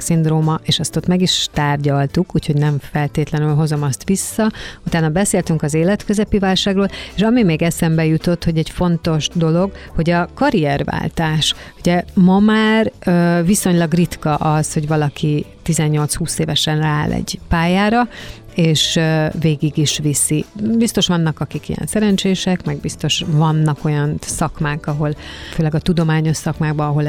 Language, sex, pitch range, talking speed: Hungarian, female, 150-175 Hz, 135 wpm